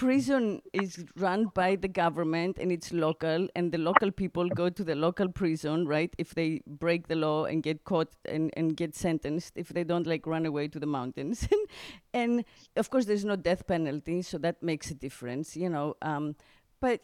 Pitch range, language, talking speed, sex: 160-215 Hz, English, 195 wpm, female